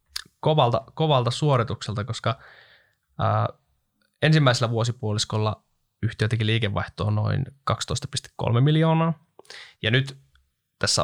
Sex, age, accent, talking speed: male, 20-39, native, 85 wpm